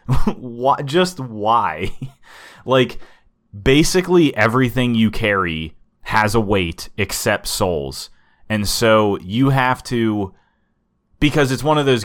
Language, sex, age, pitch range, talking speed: English, male, 20-39, 95-115 Hz, 115 wpm